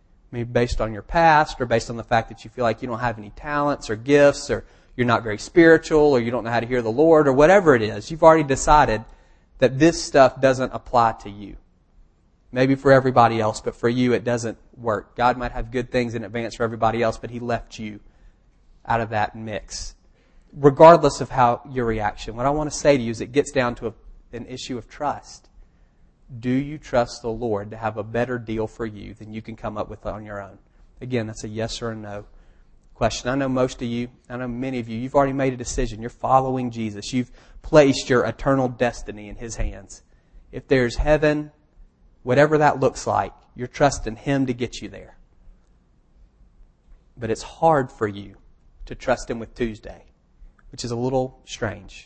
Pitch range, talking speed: 110-130 Hz, 210 wpm